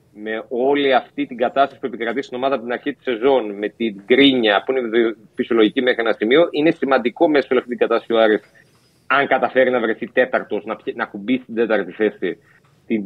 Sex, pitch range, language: male, 115-150 Hz, Greek